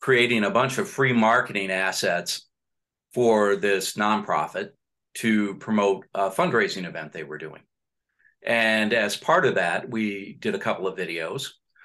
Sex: male